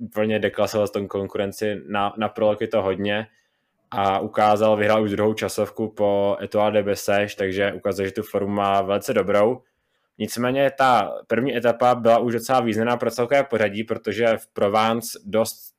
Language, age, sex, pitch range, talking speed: Czech, 20-39, male, 105-115 Hz, 160 wpm